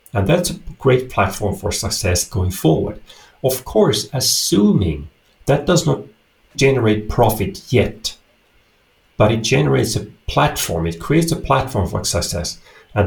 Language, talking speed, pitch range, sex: English, 140 wpm, 100-125 Hz, male